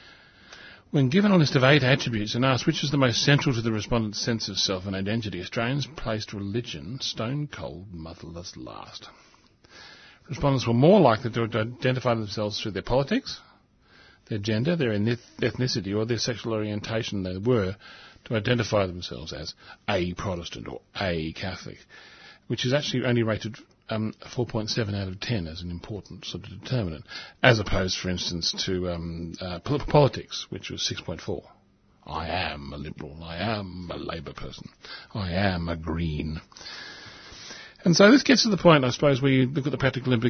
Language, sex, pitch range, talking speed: English, male, 95-130 Hz, 165 wpm